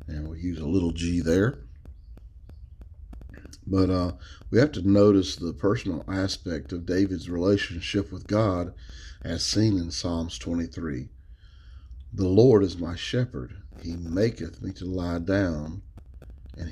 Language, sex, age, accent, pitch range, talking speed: English, male, 40-59, American, 80-100 Hz, 135 wpm